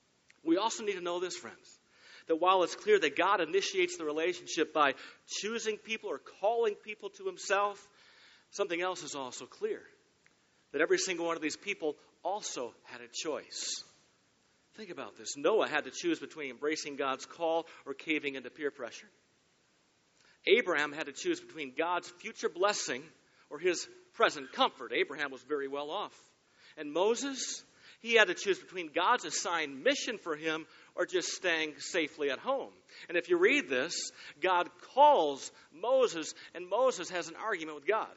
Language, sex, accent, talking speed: English, male, American, 165 wpm